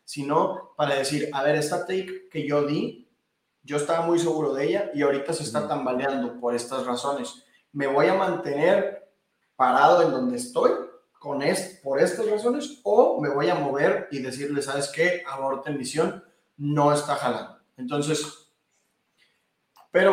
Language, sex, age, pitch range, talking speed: Spanish, male, 20-39, 140-195 Hz, 160 wpm